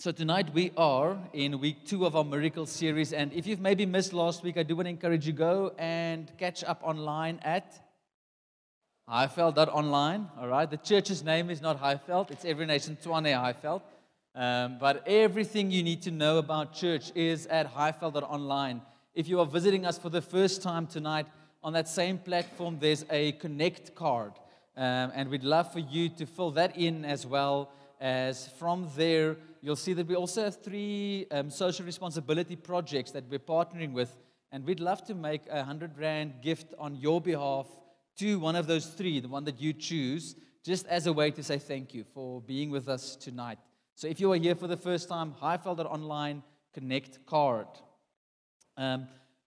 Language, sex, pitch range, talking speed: English, male, 140-175 Hz, 185 wpm